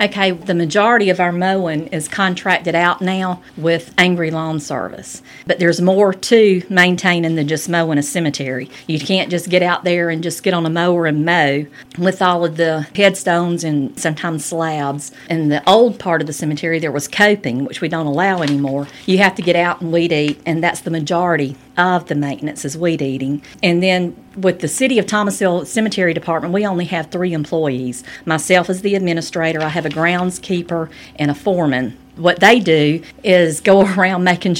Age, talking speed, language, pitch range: 50-69, 195 wpm, English, 160-180 Hz